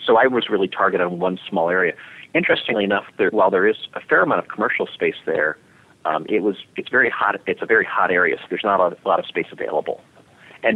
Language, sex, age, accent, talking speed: English, male, 30-49, American, 240 wpm